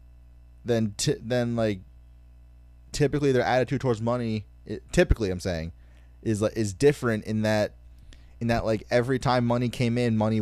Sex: male